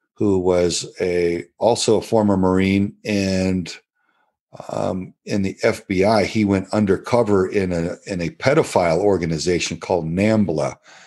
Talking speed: 125 wpm